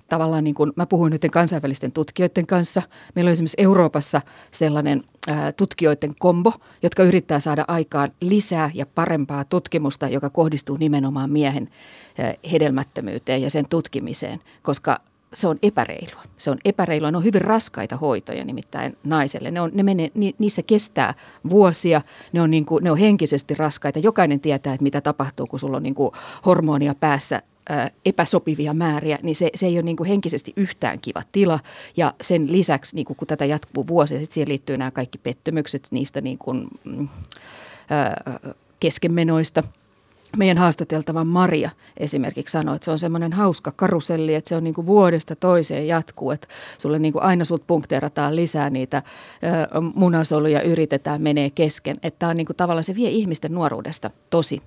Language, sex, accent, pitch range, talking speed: Finnish, female, native, 145-175 Hz, 160 wpm